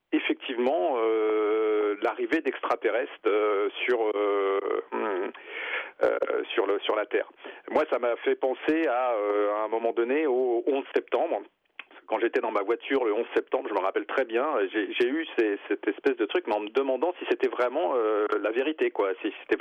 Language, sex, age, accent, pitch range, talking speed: French, male, 40-59, French, 350-440 Hz, 190 wpm